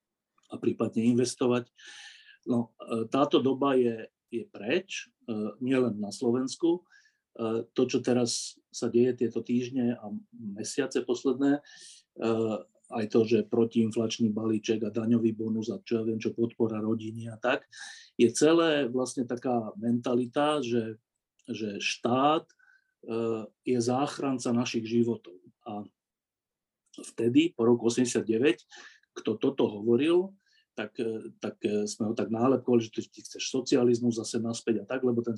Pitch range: 115-145 Hz